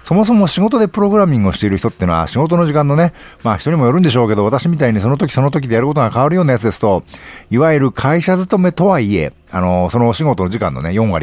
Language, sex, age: Japanese, male, 50-69